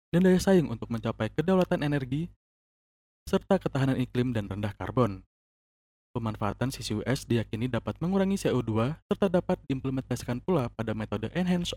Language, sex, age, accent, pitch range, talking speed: Indonesian, male, 20-39, native, 110-155 Hz, 135 wpm